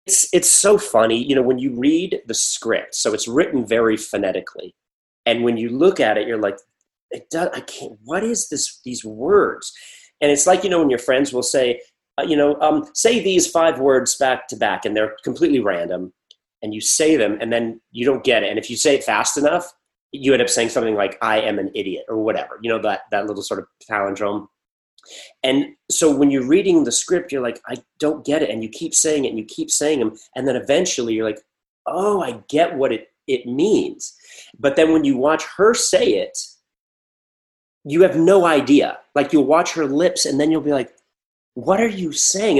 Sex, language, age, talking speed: male, English, 30-49, 220 wpm